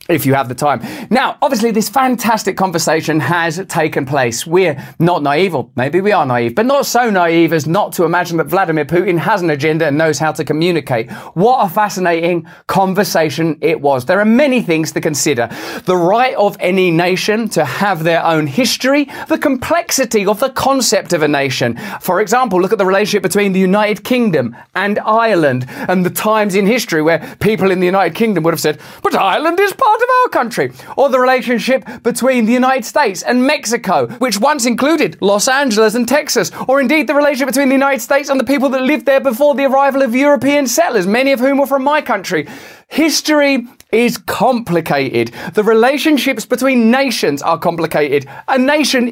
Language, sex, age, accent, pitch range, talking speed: English, male, 30-49, British, 165-265 Hz, 190 wpm